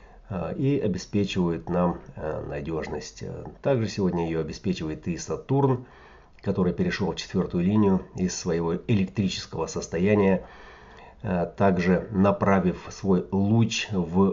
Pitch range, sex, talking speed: 90-105 Hz, male, 100 wpm